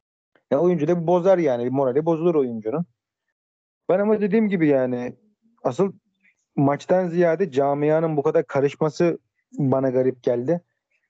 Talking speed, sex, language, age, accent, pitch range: 125 wpm, male, Turkish, 40-59, native, 125-160 Hz